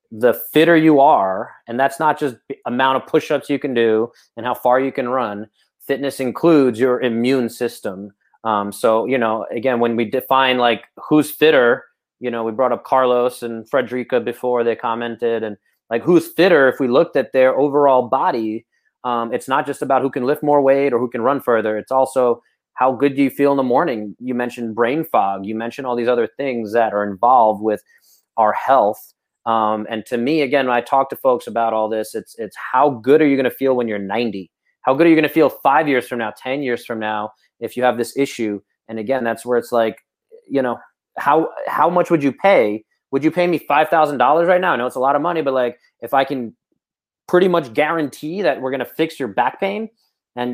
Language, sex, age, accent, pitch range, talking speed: English, male, 30-49, American, 115-145 Hz, 225 wpm